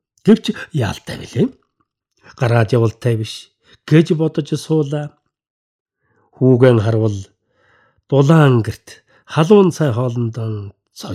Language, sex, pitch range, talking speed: English, male, 115-160 Hz, 55 wpm